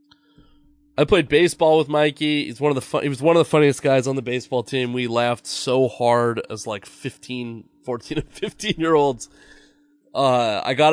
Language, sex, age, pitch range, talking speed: English, male, 20-39, 115-150 Hz, 200 wpm